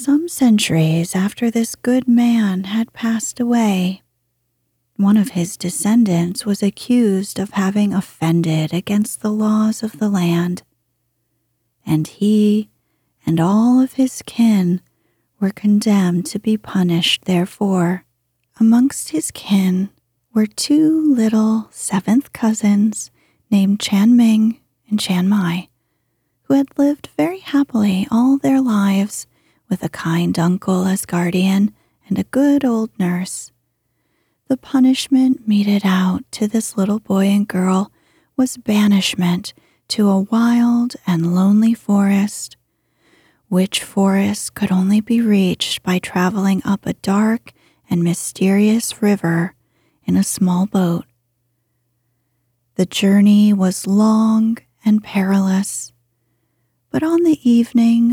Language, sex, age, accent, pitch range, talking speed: English, female, 30-49, American, 175-220 Hz, 120 wpm